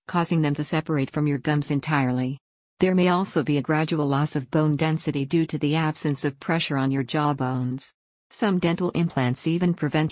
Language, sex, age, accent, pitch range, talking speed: English, female, 50-69, American, 140-170 Hz, 195 wpm